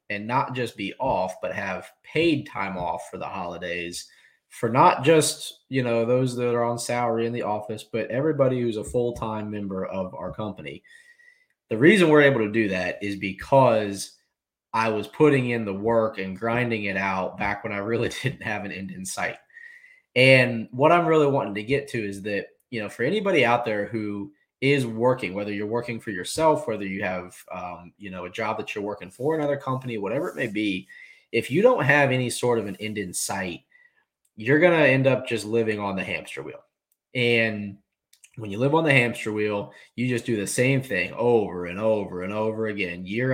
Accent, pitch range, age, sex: American, 100-130 Hz, 20-39, male